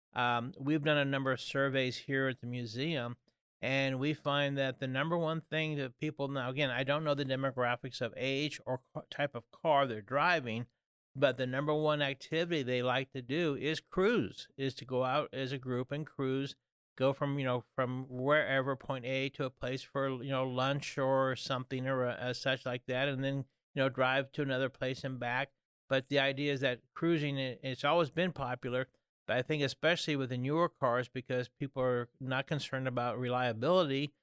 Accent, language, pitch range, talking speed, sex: American, English, 130-145 Hz, 195 wpm, male